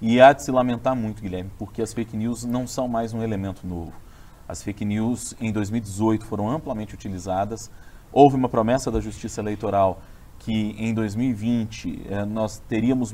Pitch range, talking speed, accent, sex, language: 100-120 Hz, 170 wpm, Brazilian, male, Portuguese